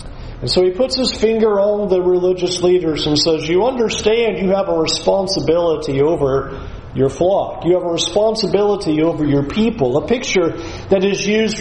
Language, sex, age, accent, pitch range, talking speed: English, male, 40-59, American, 160-215 Hz, 170 wpm